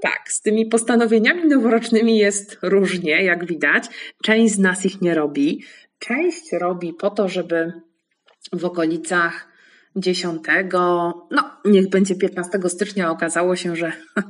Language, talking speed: Polish, 130 wpm